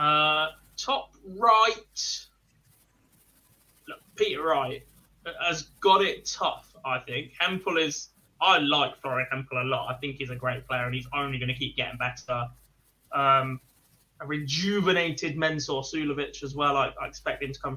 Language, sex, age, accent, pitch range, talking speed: English, male, 20-39, British, 130-160 Hz, 160 wpm